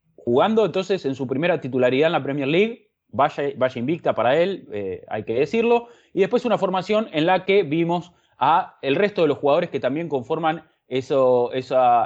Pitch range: 125-165 Hz